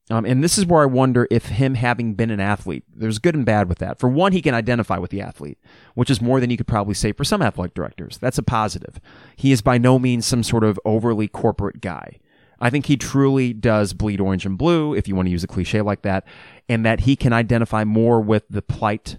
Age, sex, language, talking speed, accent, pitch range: 30-49, male, English, 250 wpm, American, 100-130 Hz